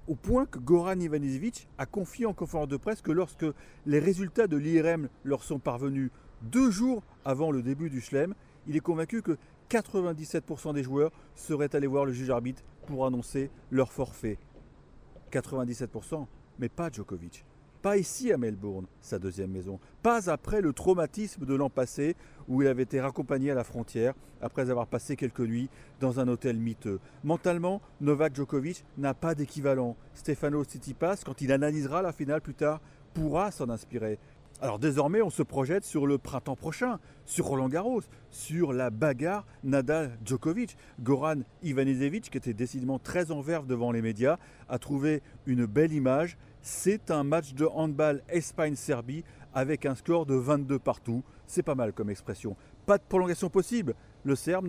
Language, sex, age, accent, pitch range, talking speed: French, male, 40-59, French, 130-165 Hz, 165 wpm